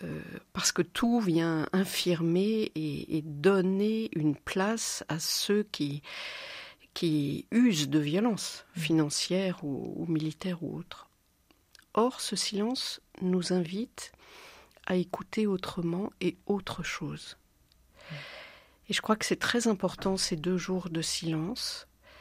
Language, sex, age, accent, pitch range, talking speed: French, female, 50-69, French, 165-210 Hz, 125 wpm